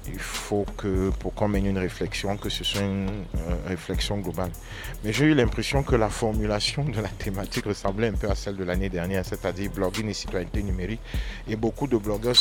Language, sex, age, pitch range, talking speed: French, male, 50-69, 100-120 Hz, 205 wpm